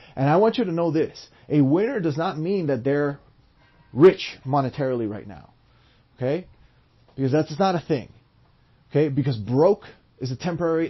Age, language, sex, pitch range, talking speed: 30-49, English, male, 120-160 Hz, 165 wpm